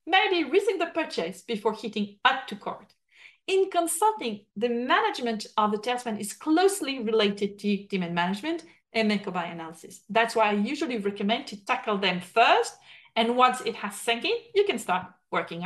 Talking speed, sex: 165 wpm, female